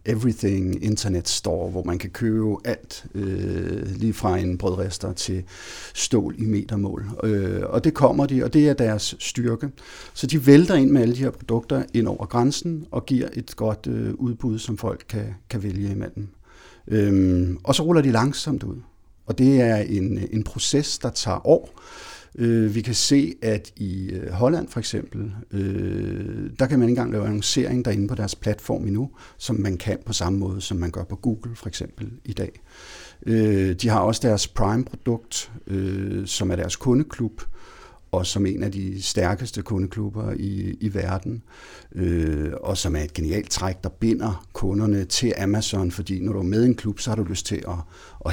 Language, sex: Danish, male